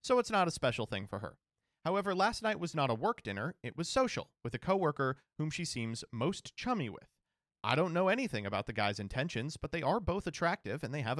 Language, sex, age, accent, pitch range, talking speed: English, male, 30-49, American, 115-175 Hz, 235 wpm